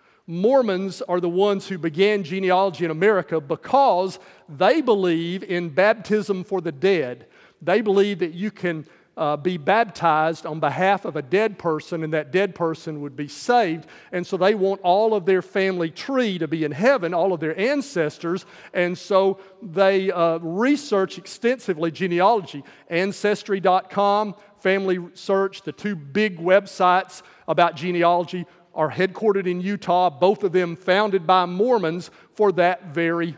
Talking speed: 150 wpm